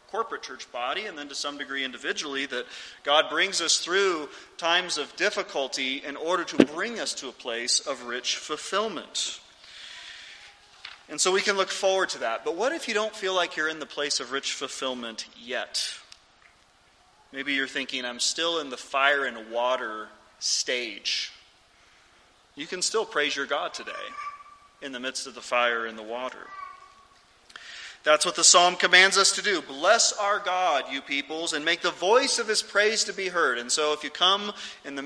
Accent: American